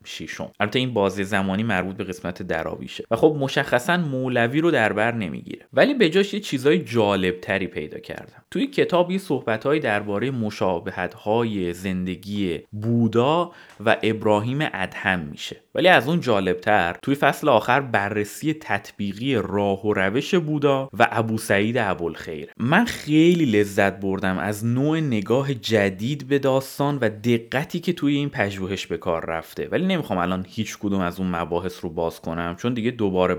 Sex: male